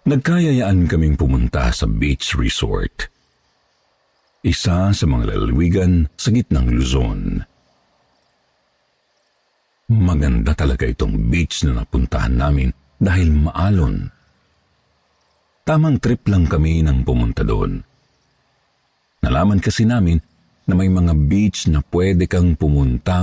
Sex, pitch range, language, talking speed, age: male, 75-105 Hz, Filipino, 105 wpm, 50-69